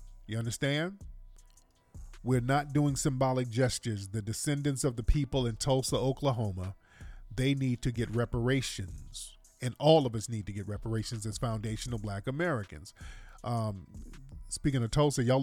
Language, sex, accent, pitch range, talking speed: English, male, American, 105-130 Hz, 145 wpm